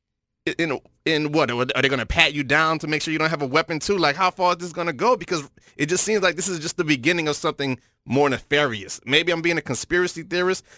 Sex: male